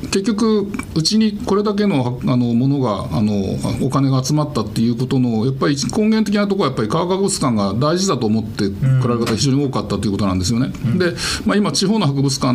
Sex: male